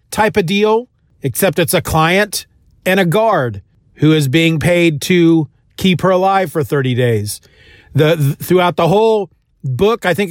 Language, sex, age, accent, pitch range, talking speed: English, male, 40-59, American, 155-200 Hz, 170 wpm